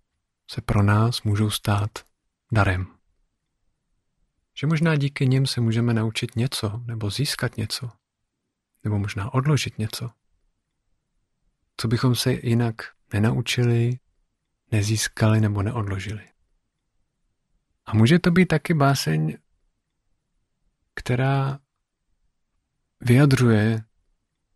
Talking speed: 90 wpm